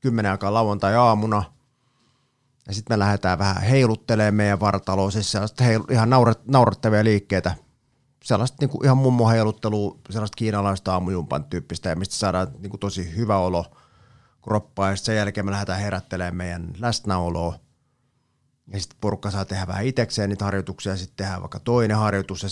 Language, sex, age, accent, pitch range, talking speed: Finnish, male, 30-49, native, 95-115 Hz, 160 wpm